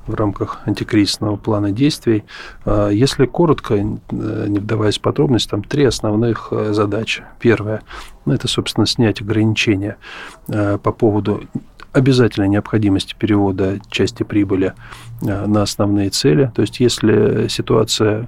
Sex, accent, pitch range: male, native, 105-120 Hz